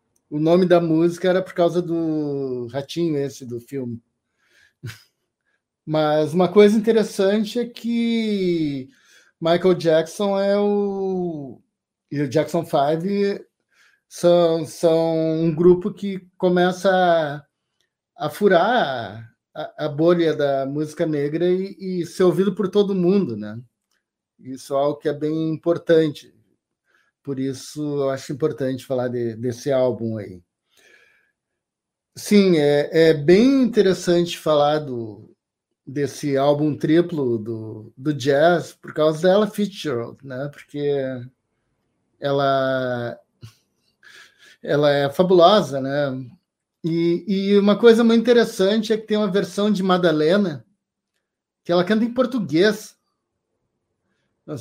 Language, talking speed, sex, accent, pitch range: Portuguese, 120 wpm, male, Brazilian, 140-190 Hz